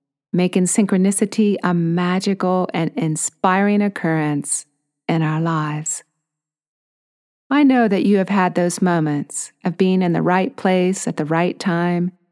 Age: 50-69